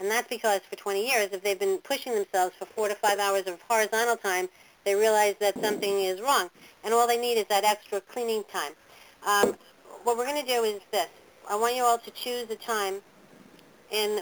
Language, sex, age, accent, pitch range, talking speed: English, female, 50-69, American, 185-225 Hz, 215 wpm